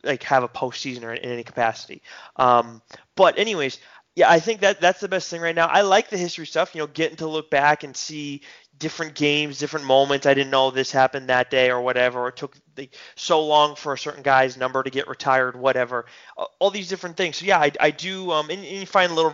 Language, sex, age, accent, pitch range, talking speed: English, male, 20-39, American, 135-170 Hz, 240 wpm